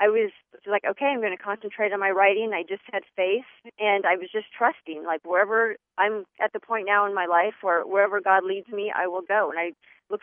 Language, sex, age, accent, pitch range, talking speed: English, female, 30-49, American, 190-215 Hz, 245 wpm